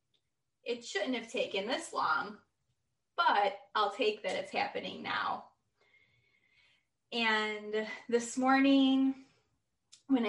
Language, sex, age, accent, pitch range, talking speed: English, female, 20-39, American, 195-240 Hz, 100 wpm